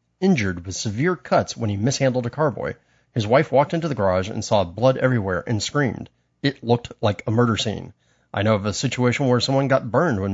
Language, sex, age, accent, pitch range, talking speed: English, male, 30-49, American, 105-145 Hz, 215 wpm